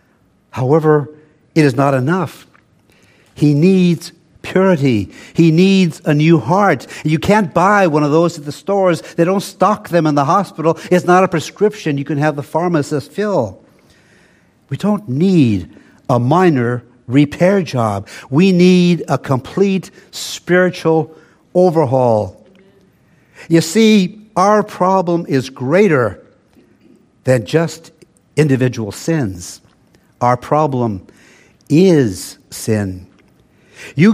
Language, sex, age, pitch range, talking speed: English, male, 60-79, 135-175 Hz, 120 wpm